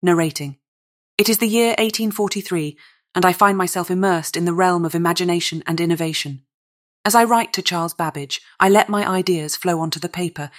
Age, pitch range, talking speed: 30-49, 160-185 Hz, 180 wpm